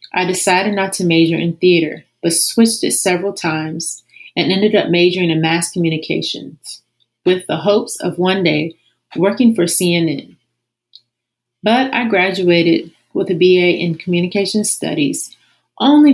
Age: 30-49